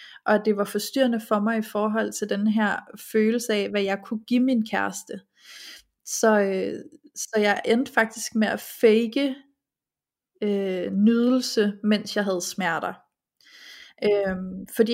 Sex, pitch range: female, 195-225 Hz